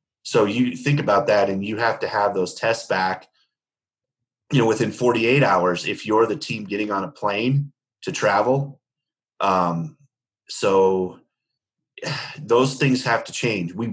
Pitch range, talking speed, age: 95-125 Hz, 155 wpm, 30-49